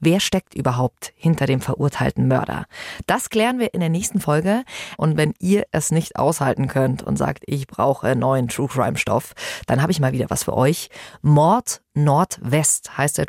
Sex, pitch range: female, 140-185 Hz